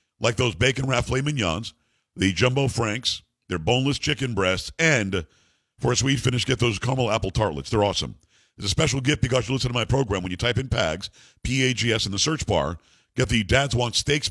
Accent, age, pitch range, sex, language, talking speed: American, 50-69, 105-135 Hz, male, English, 205 wpm